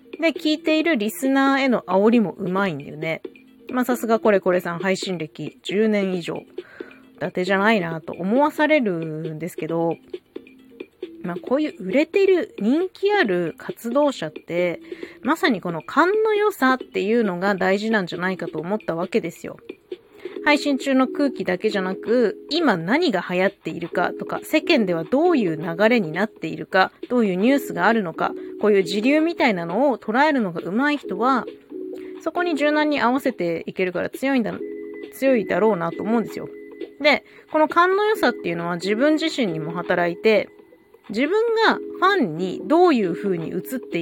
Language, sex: Japanese, female